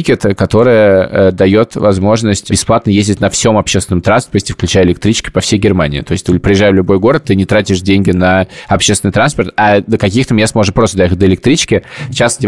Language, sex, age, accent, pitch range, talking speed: Russian, male, 20-39, native, 95-115 Hz, 180 wpm